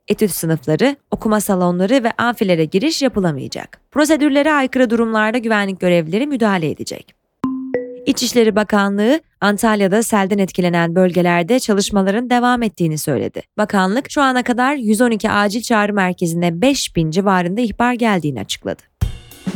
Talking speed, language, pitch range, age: 120 wpm, Turkish, 185-260 Hz, 20-39